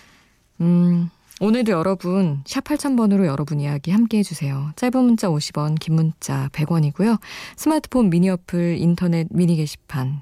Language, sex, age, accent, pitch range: Korean, female, 20-39, native, 150-195 Hz